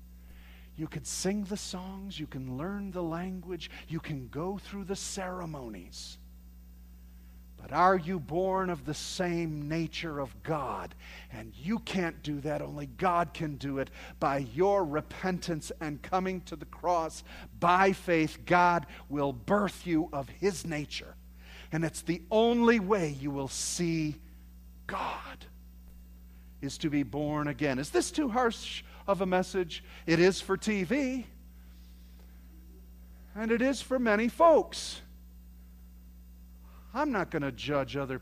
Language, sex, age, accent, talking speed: English, male, 50-69, American, 140 wpm